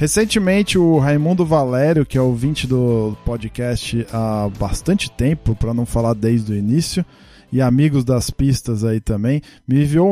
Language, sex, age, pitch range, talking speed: Portuguese, male, 20-39, 120-150 Hz, 155 wpm